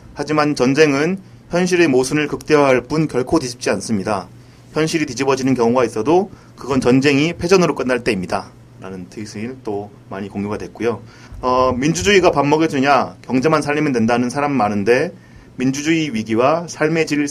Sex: male